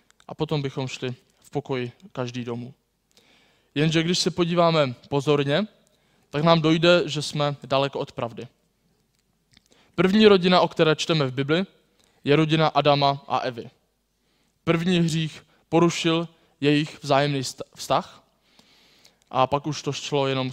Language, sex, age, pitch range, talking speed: Czech, male, 20-39, 140-170 Hz, 130 wpm